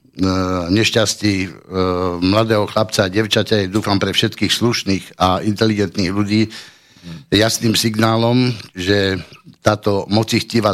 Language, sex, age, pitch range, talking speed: Slovak, male, 60-79, 100-115 Hz, 100 wpm